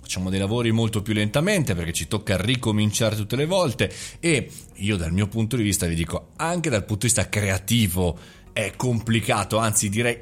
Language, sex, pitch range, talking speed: Italian, male, 105-140 Hz, 190 wpm